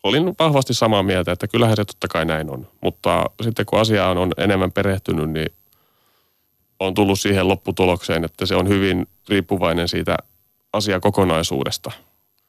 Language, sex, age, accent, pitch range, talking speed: Finnish, male, 30-49, native, 80-95 Hz, 145 wpm